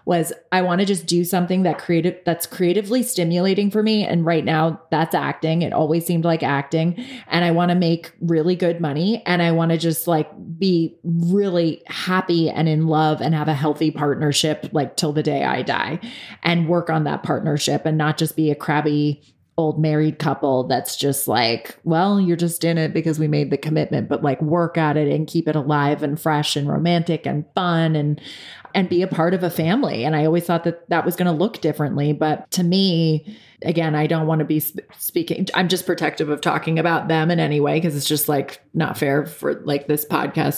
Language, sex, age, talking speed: English, female, 30-49, 215 wpm